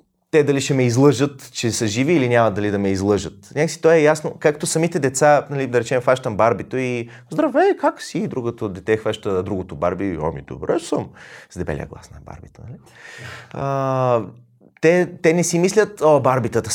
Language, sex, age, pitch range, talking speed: Bulgarian, male, 30-49, 115-160 Hz, 185 wpm